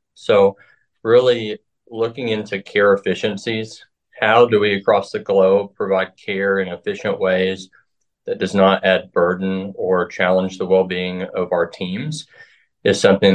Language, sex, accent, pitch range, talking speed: English, male, American, 95-110 Hz, 145 wpm